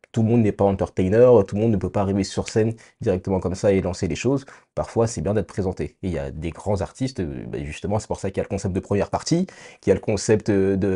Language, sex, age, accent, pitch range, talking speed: French, male, 30-49, French, 90-115 Hz, 290 wpm